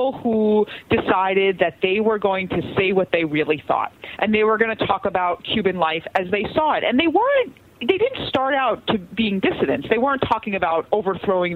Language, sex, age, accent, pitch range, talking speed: English, female, 40-59, American, 170-230 Hz, 210 wpm